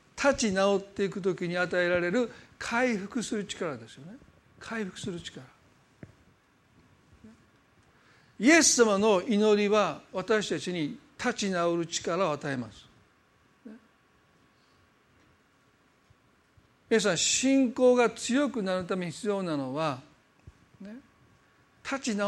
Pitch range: 170-230 Hz